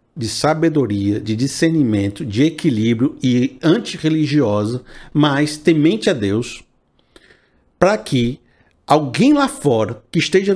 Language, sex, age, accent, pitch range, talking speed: Portuguese, male, 50-69, Brazilian, 145-220 Hz, 110 wpm